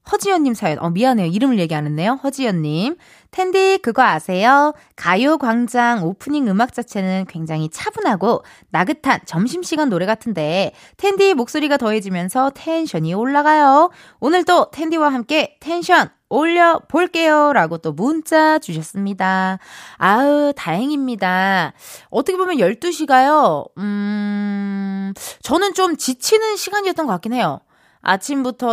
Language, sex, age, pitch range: Korean, female, 20-39, 190-295 Hz